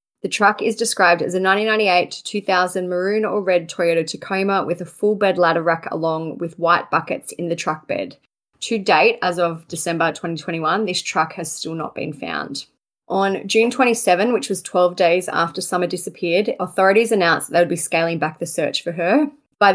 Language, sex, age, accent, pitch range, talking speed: English, female, 20-39, Australian, 165-195 Hz, 190 wpm